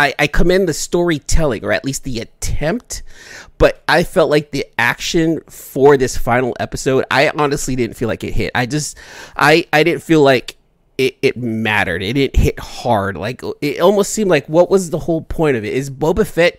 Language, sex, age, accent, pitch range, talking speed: English, male, 30-49, American, 130-160 Hz, 200 wpm